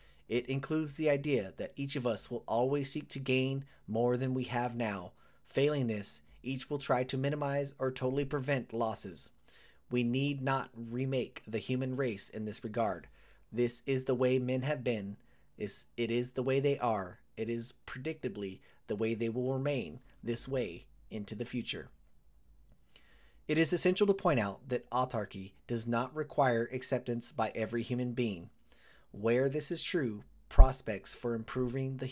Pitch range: 115-140 Hz